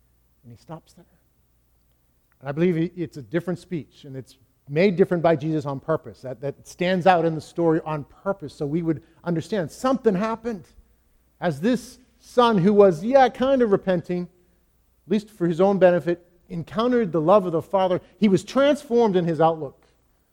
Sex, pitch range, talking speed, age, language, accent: male, 135-185 Hz, 180 wpm, 50-69, English, American